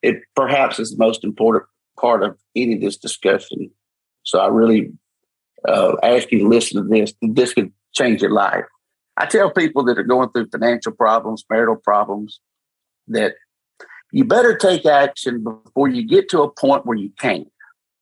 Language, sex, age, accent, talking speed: English, male, 50-69, American, 175 wpm